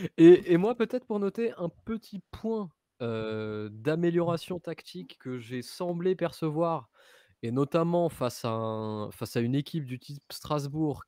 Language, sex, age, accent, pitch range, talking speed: French, male, 20-39, French, 125-175 Hz, 150 wpm